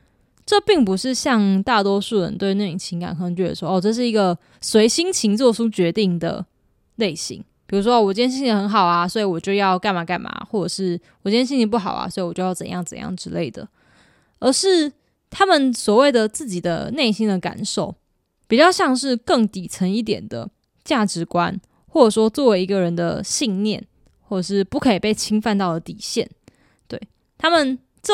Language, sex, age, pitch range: Chinese, female, 20-39, 180-235 Hz